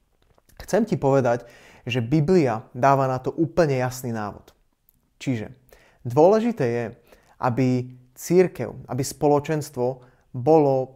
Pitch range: 125-145 Hz